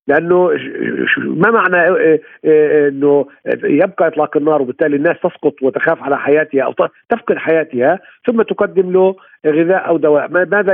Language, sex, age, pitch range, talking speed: Arabic, male, 50-69, 145-205 Hz, 130 wpm